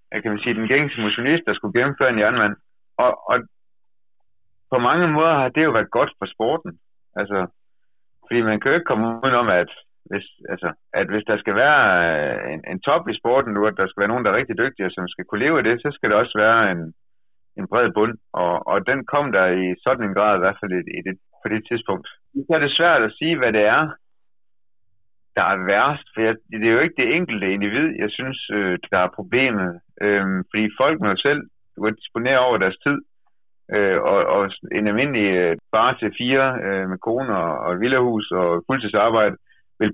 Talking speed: 215 wpm